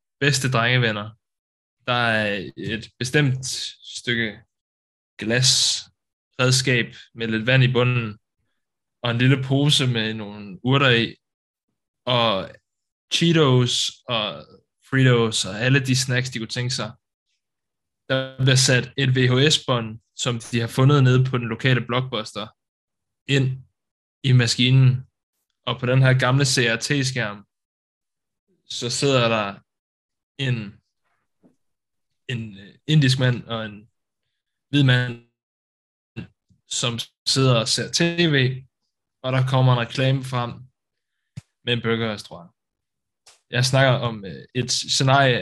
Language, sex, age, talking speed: Danish, male, 10-29, 115 wpm